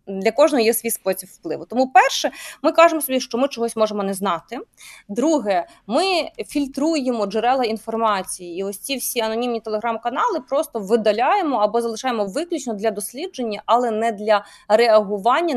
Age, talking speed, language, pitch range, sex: 20-39, 150 wpm, Ukrainian, 215-280 Hz, female